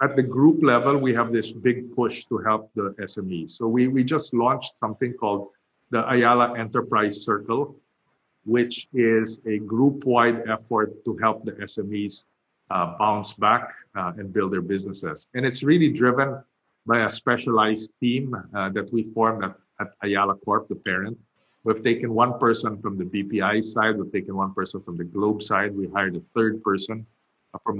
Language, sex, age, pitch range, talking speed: English, male, 50-69, 105-125 Hz, 175 wpm